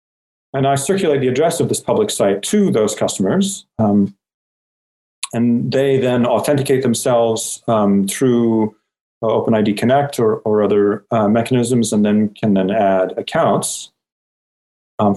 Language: English